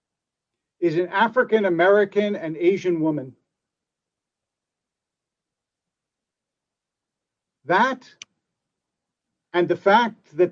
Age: 50-69